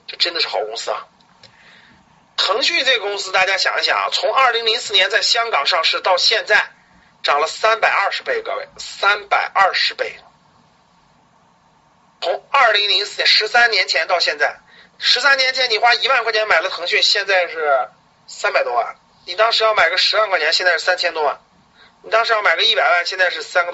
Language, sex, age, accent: Chinese, male, 30-49, native